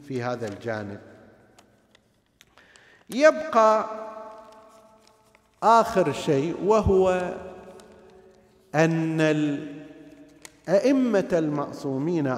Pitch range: 120-165 Hz